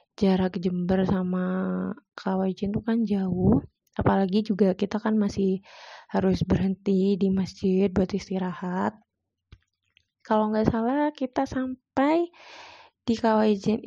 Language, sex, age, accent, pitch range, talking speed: Indonesian, female, 20-39, native, 190-225 Hz, 110 wpm